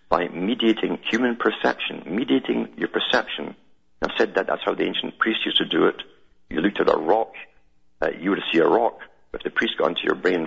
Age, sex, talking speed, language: 50-69, male, 220 wpm, English